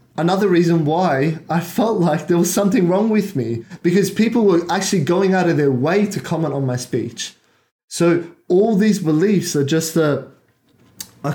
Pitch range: 140-185 Hz